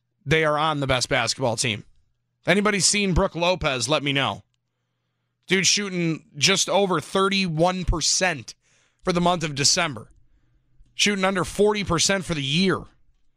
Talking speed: 140 wpm